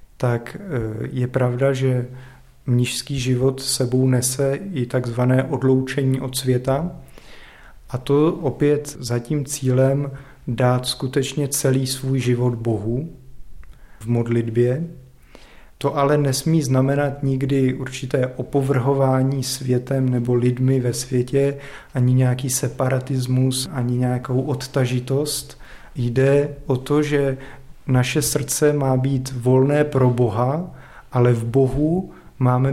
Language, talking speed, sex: Czech, 110 wpm, male